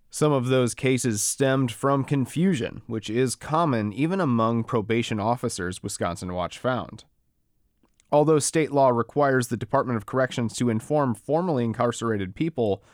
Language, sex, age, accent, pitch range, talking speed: English, male, 30-49, American, 115-150 Hz, 140 wpm